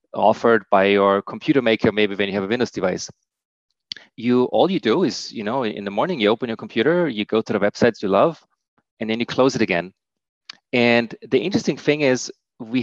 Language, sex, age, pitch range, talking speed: English, male, 30-49, 110-130 Hz, 210 wpm